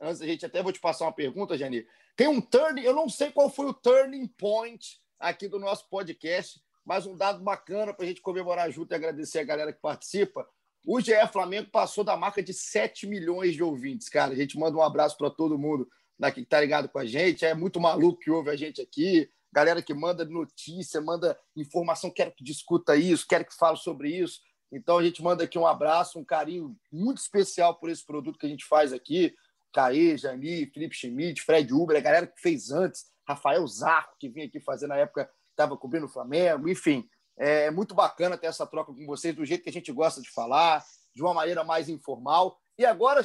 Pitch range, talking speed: 160-225 Hz, 215 wpm